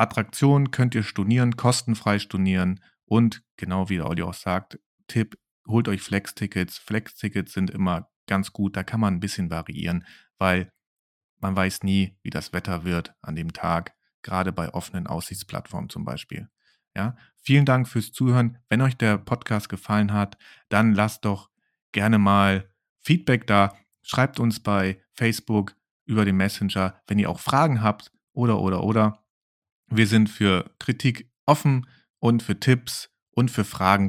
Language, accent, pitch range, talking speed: German, German, 95-115 Hz, 155 wpm